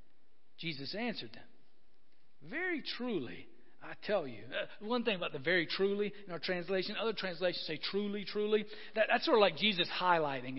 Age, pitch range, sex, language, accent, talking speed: 50-69, 155-245 Hz, male, English, American, 170 wpm